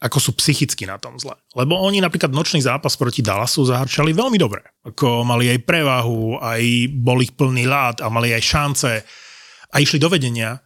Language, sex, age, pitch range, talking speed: Slovak, male, 30-49, 120-155 Hz, 185 wpm